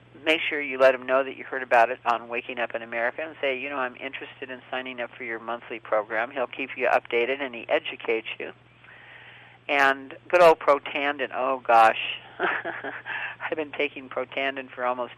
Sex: male